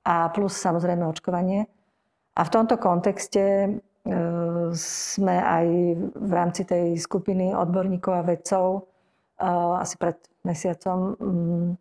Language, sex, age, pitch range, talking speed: Slovak, female, 40-59, 175-190 Hz, 115 wpm